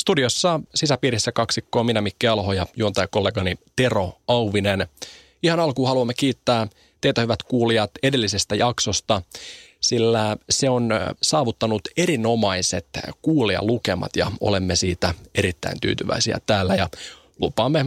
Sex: male